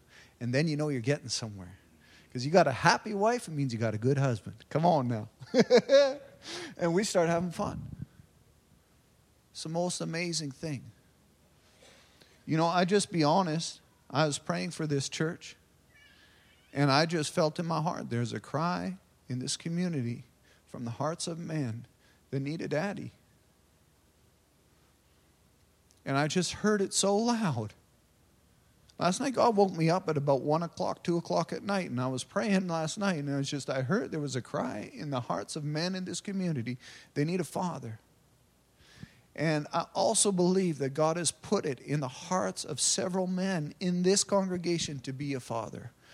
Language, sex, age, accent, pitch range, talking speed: English, male, 40-59, American, 125-180 Hz, 180 wpm